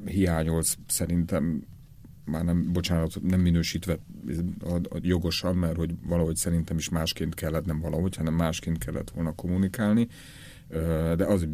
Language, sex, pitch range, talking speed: Hungarian, male, 80-90 Hz, 120 wpm